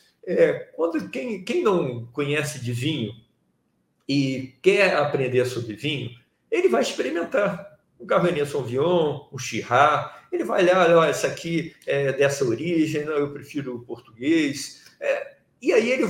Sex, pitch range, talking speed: male, 130-190 Hz, 145 wpm